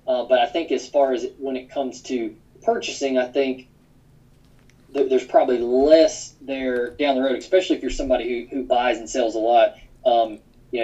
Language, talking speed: English, 200 wpm